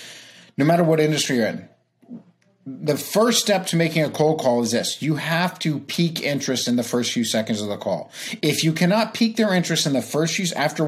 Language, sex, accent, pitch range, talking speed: English, male, American, 150-215 Hz, 220 wpm